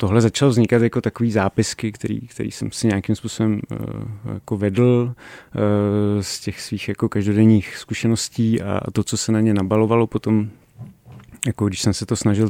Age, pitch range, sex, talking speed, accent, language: 30-49, 105-120 Hz, male, 155 wpm, native, Czech